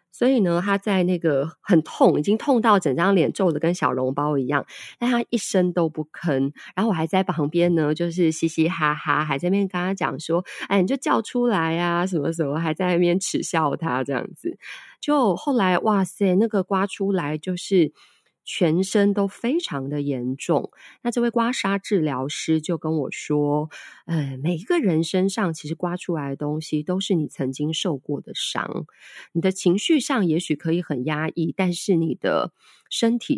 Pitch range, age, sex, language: 150-195 Hz, 20-39, female, Chinese